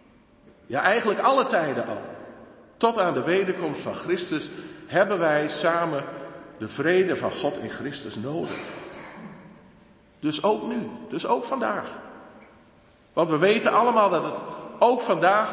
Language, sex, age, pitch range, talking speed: Dutch, male, 50-69, 170-215 Hz, 135 wpm